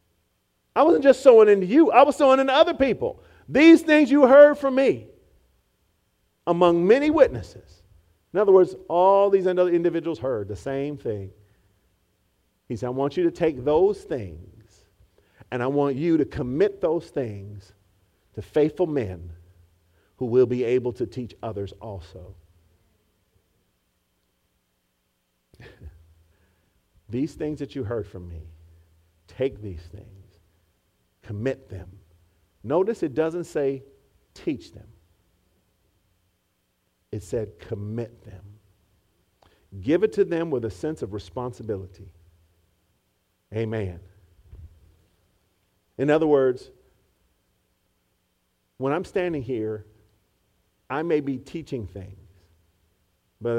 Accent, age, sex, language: American, 50-69, male, English